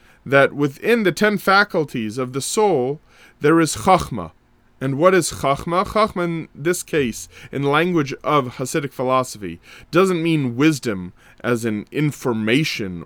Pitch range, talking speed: 130-195 Hz, 140 wpm